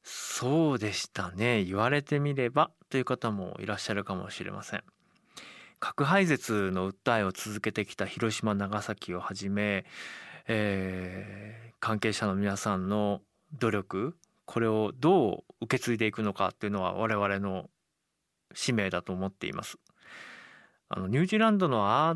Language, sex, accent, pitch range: Japanese, male, native, 100-125 Hz